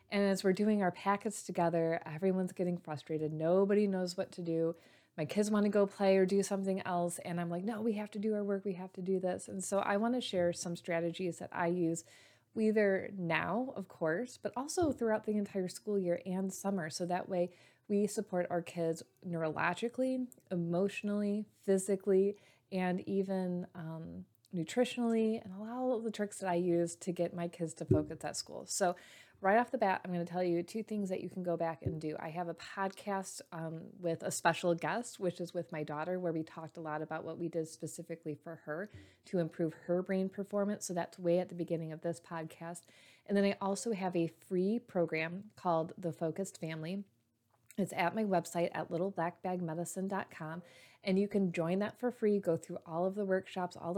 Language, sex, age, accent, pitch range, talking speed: English, female, 20-39, American, 170-200 Hz, 205 wpm